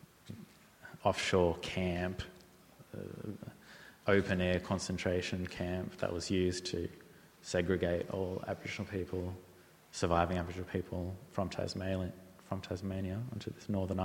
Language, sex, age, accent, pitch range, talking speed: English, male, 20-39, Australian, 90-100 Hz, 100 wpm